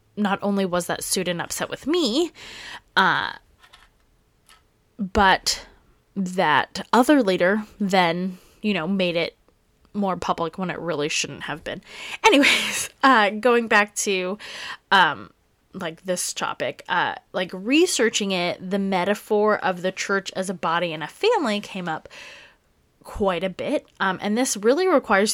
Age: 20-39